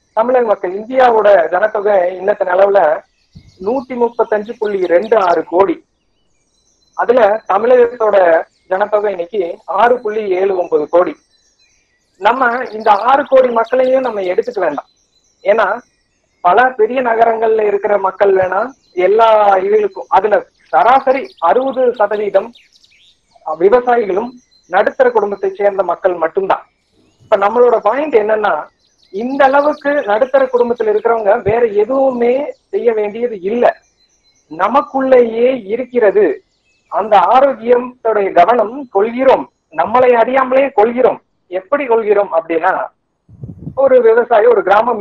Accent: native